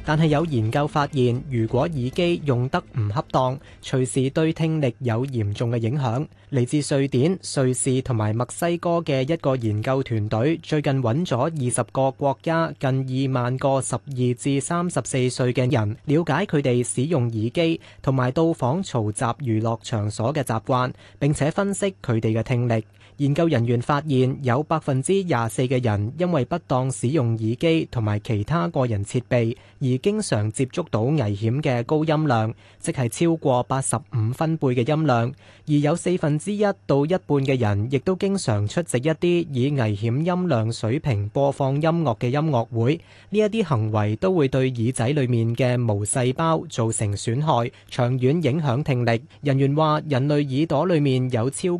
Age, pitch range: 20-39, 120-155 Hz